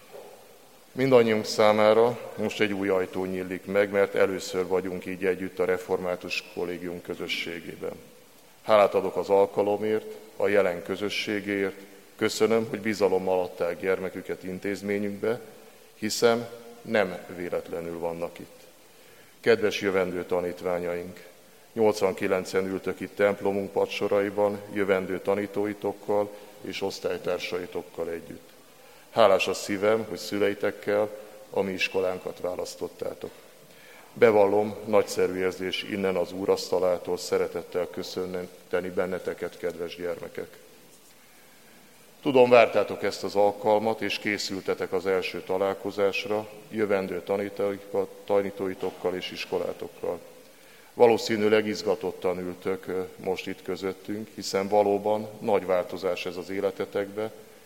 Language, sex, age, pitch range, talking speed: Hungarian, male, 50-69, 95-125 Hz, 100 wpm